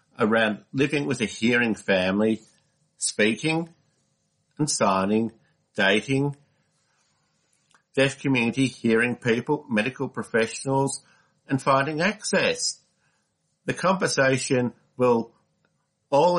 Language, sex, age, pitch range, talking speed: English, male, 60-79, 105-135 Hz, 85 wpm